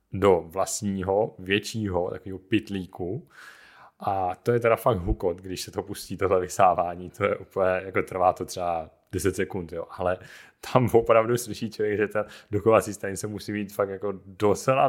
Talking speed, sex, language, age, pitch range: 165 wpm, male, Czech, 30-49, 85-105 Hz